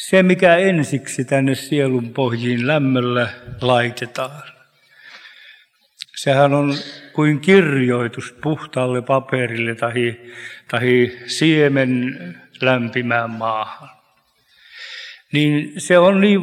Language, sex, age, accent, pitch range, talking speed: Finnish, male, 50-69, native, 125-155 Hz, 80 wpm